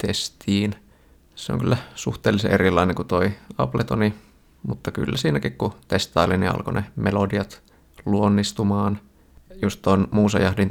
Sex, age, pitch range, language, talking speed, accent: male, 20-39, 95-110 Hz, Finnish, 125 wpm, native